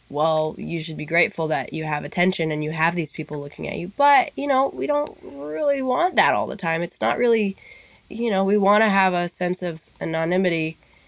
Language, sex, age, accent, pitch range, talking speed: English, female, 20-39, American, 155-200 Hz, 220 wpm